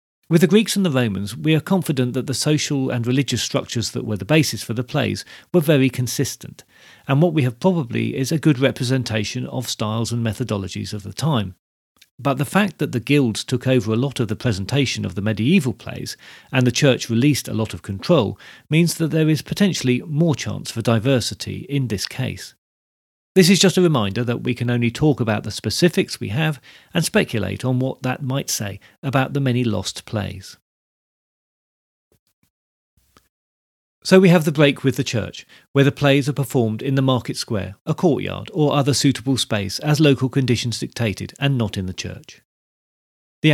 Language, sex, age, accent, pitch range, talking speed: English, male, 40-59, British, 110-145 Hz, 190 wpm